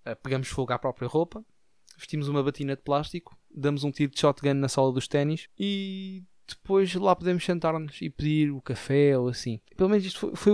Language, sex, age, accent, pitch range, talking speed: Portuguese, male, 20-39, Portuguese, 135-160 Hz, 195 wpm